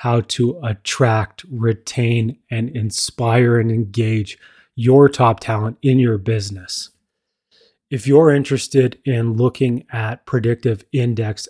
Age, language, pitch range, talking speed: 30-49, English, 110-125 Hz, 115 wpm